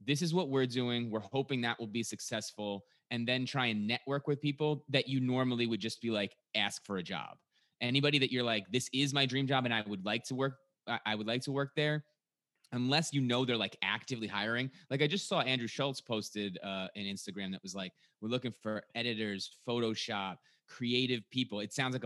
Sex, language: male, English